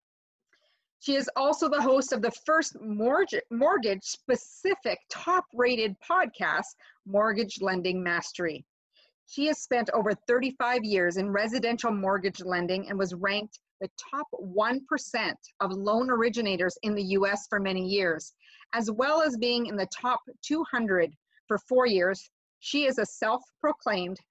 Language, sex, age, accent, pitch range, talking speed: English, female, 40-59, American, 195-250 Hz, 135 wpm